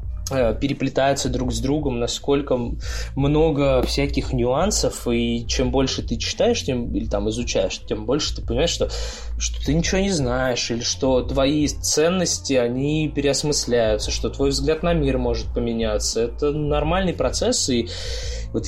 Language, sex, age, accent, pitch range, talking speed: Russian, male, 20-39, native, 120-145 Hz, 145 wpm